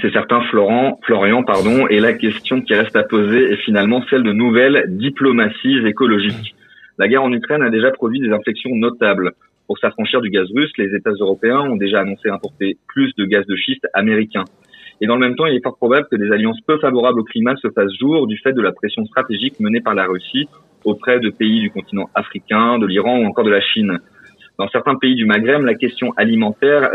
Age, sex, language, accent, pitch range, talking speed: 30-49, male, French, French, 105-135 Hz, 215 wpm